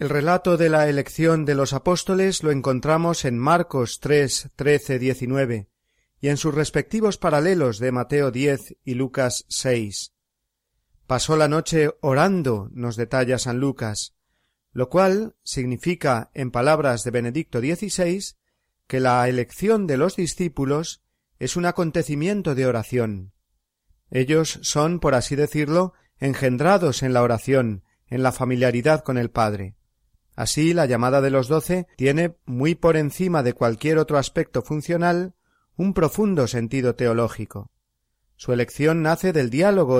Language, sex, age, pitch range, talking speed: Spanish, male, 40-59, 120-160 Hz, 135 wpm